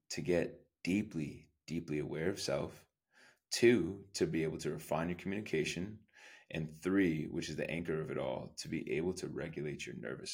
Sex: male